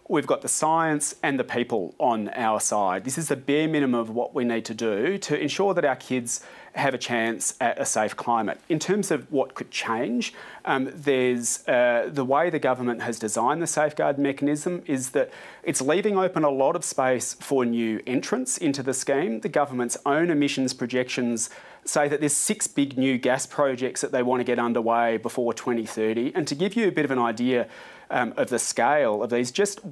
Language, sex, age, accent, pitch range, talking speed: English, male, 30-49, Australian, 120-150 Hz, 205 wpm